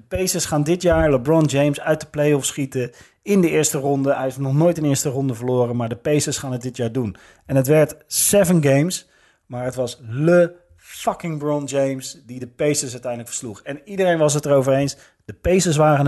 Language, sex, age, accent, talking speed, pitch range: Dutch, male, 40-59, Dutch, 215 wpm, 125-150 Hz